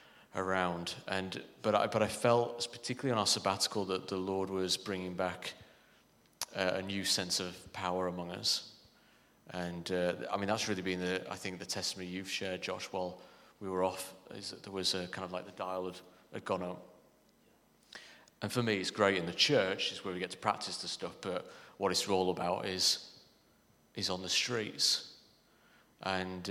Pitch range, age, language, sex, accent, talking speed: 90-105 Hz, 30-49, English, male, British, 190 wpm